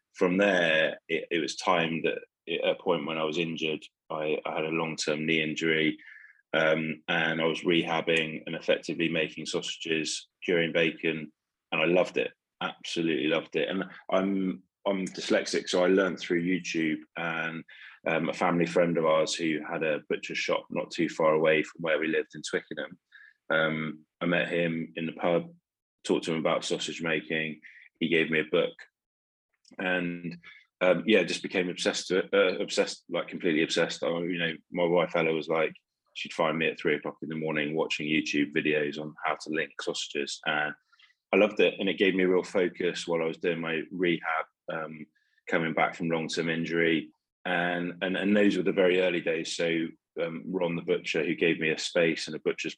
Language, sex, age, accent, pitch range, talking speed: English, male, 20-39, British, 80-90 Hz, 195 wpm